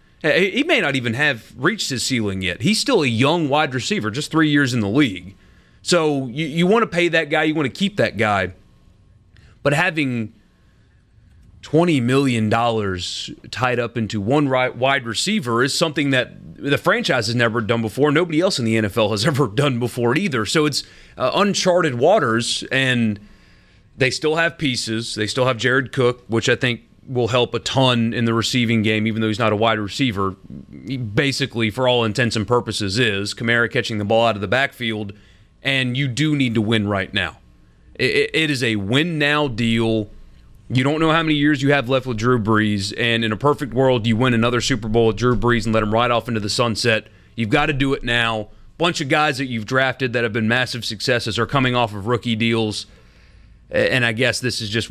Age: 30-49